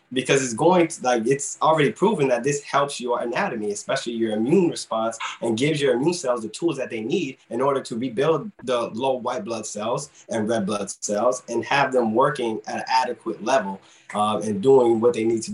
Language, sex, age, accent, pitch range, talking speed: English, male, 20-39, American, 120-160 Hz, 210 wpm